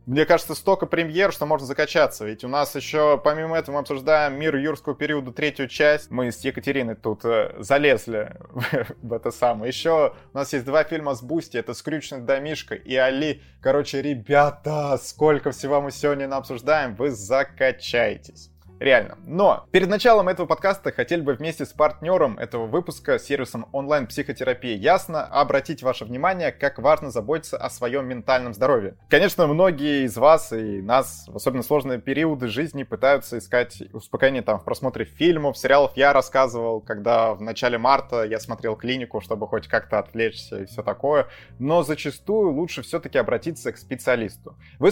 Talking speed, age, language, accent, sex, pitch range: 160 wpm, 20-39, Russian, native, male, 120-155 Hz